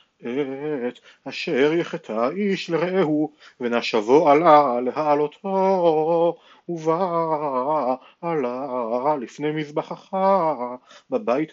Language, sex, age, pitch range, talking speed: Hebrew, male, 40-59, 140-170 Hz, 70 wpm